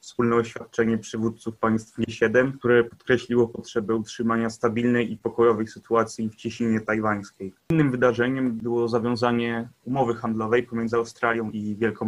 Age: 20-39